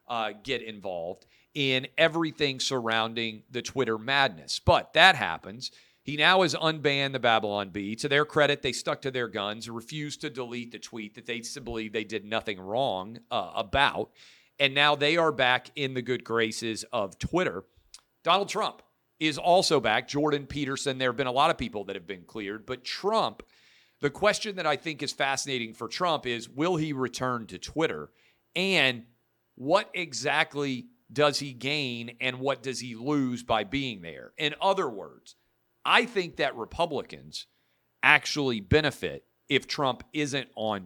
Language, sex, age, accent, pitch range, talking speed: English, male, 40-59, American, 115-150 Hz, 165 wpm